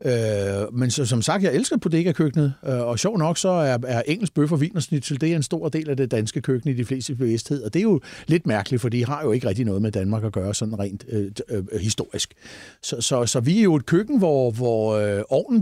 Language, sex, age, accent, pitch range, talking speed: Danish, male, 60-79, native, 125-185 Hz, 260 wpm